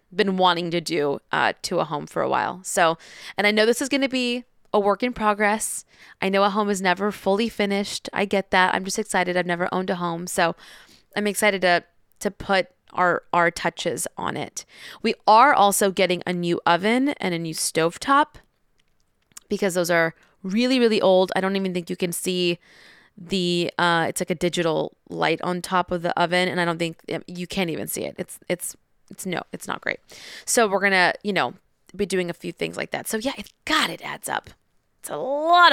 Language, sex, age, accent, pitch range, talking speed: English, female, 20-39, American, 180-210 Hz, 215 wpm